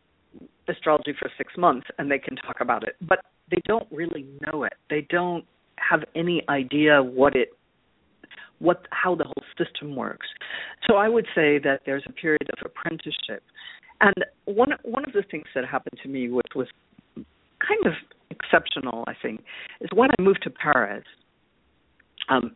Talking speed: 170 wpm